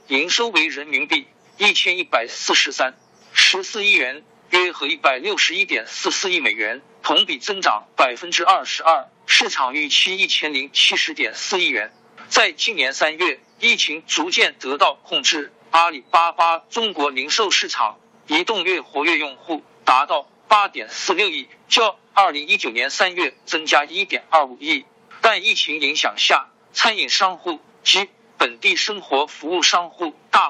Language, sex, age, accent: Chinese, male, 50-69, native